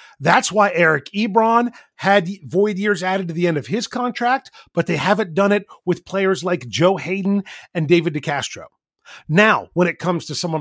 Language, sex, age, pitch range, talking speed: English, male, 40-59, 145-205 Hz, 185 wpm